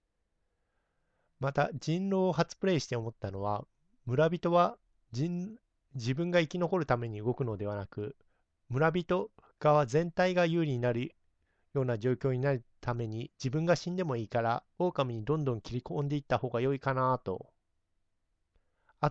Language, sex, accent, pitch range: Japanese, male, native, 105-155 Hz